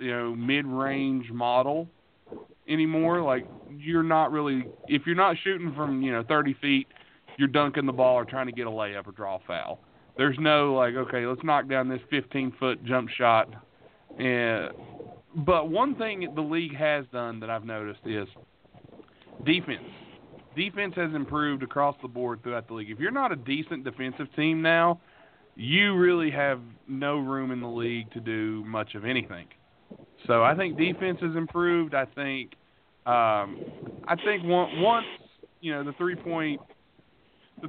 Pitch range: 120-155 Hz